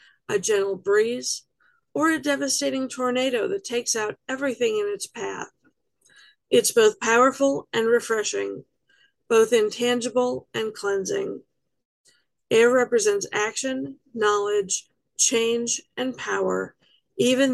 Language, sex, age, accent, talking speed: English, female, 50-69, American, 105 wpm